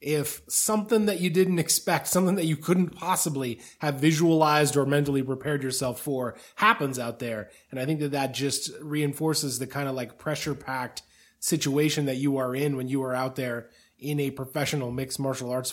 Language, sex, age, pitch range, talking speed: English, male, 20-39, 135-170 Hz, 190 wpm